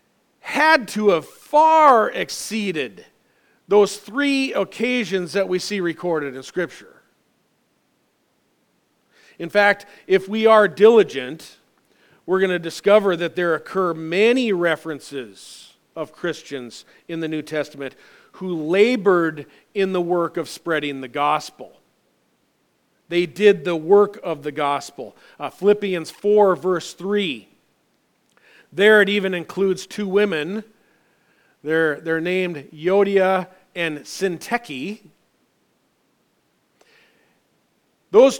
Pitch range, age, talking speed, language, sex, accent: 170-215 Hz, 40-59, 110 wpm, English, male, American